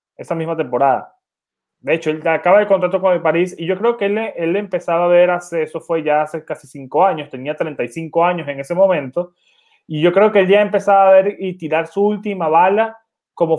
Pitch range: 145-185 Hz